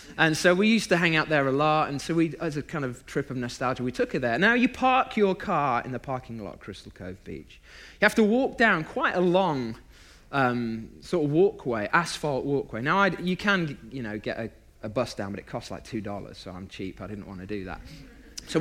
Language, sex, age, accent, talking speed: English, male, 30-49, British, 250 wpm